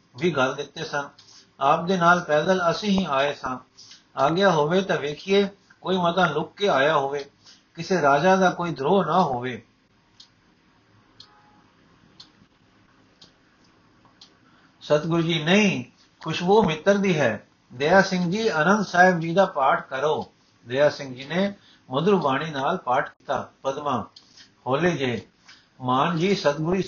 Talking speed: 135 wpm